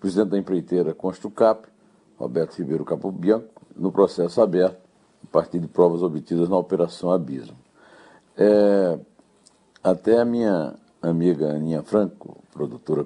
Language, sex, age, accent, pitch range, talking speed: Portuguese, male, 60-79, Brazilian, 85-115 Hz, 115 wpm